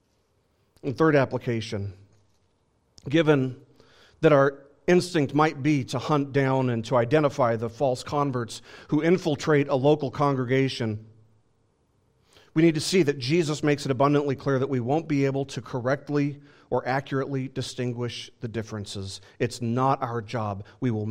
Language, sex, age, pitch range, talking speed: English, male, 40-59, 115-155 Hz, 145 wpm